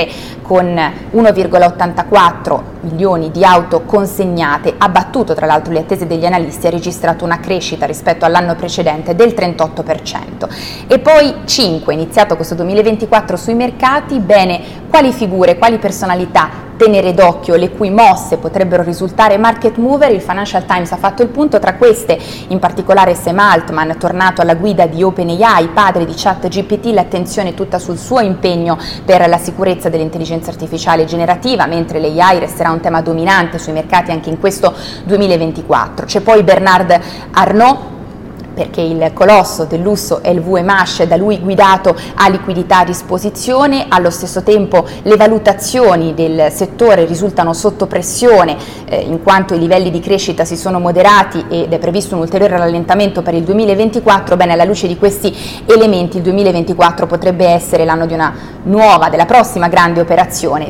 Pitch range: 170-205 Hz